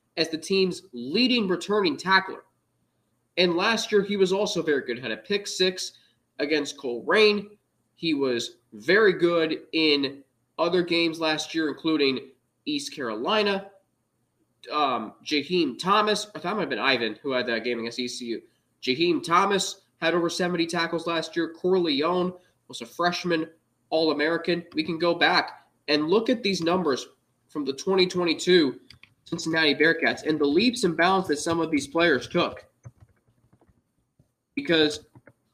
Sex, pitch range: male, 135-185 Hz